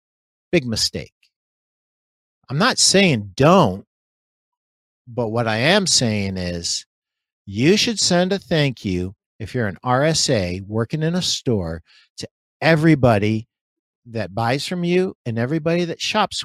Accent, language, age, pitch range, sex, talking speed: American, English, 50-69, 110-175 Hz, male, 130 wpm